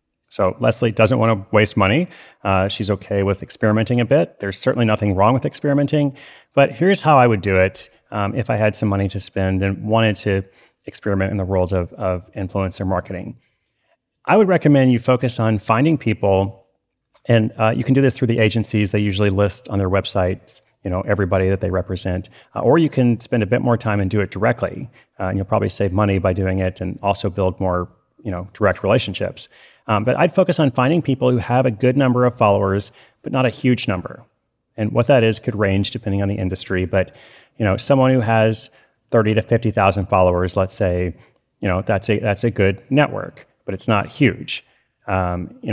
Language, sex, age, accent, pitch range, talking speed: English, male, 30-49, American, 95-125 Hz, 210 wpm